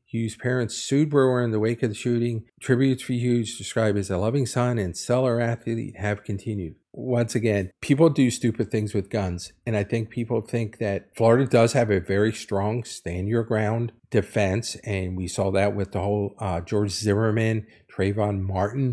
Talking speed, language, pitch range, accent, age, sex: 180 wpm, English, 105-120 Hz, American, 50-69, male